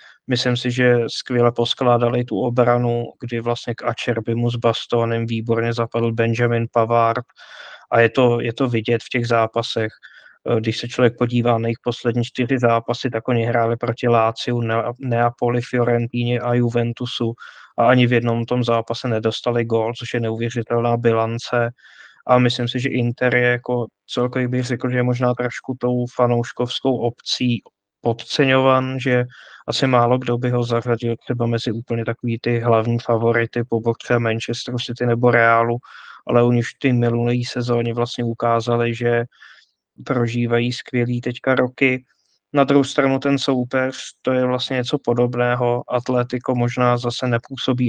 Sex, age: male, 20-39